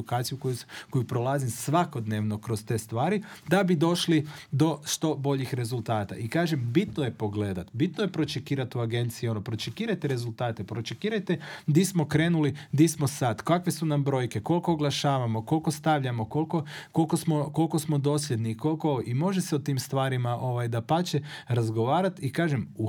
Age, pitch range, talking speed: 40-59, 120-155 Hz, 165 wpm